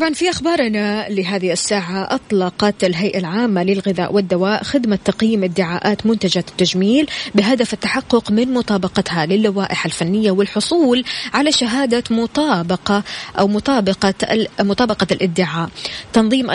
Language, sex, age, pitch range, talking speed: Arabic, female, 20-39, 185-235 Hz, 120 wpm